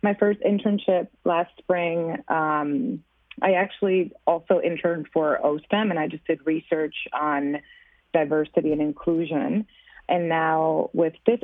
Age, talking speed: 20-39, 130 wpm